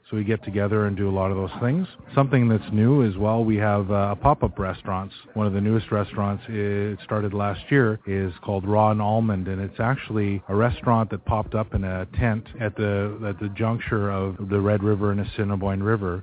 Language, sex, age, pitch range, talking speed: English, male, 30-49, 100-115 Hz, 220 wpm